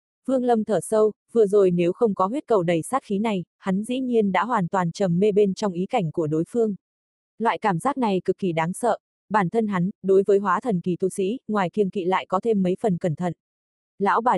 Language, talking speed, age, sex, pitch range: Vietnamese, 250 wpm, 20-39, female, 185-220 Hz